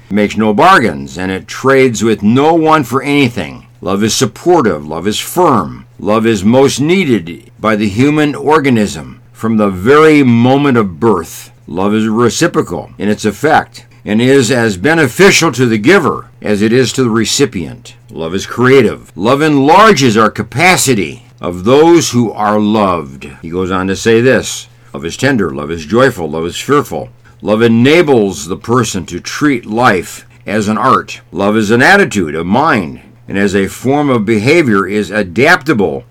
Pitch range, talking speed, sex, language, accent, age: 100-135 Hz, 170 wpm, male, English, American, 60-79